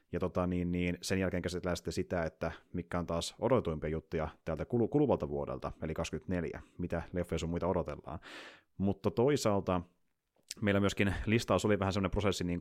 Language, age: Finnish, 30-49